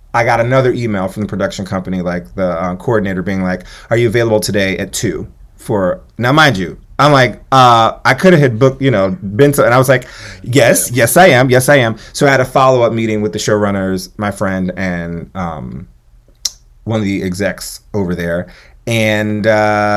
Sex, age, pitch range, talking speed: male, 30-49, 95-120 Hz, 205 wpm